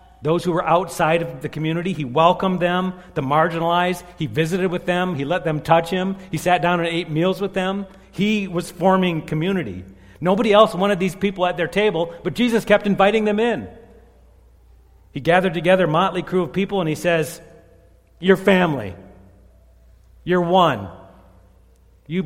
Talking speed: 170 wpm